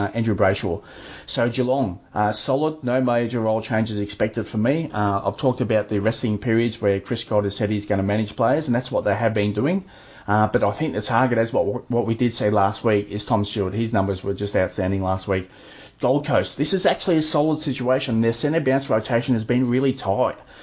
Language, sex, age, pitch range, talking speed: English, male, 30-49, 110-130 Hz, 225 wpm